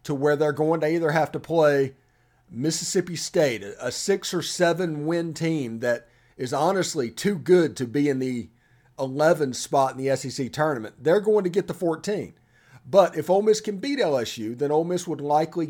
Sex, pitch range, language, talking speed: male, 125-170 Hz, English, 190 wpm